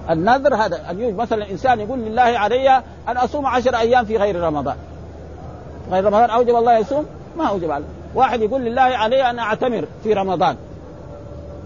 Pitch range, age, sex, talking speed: 205-255 Hz, 50-69, male, 165 wpm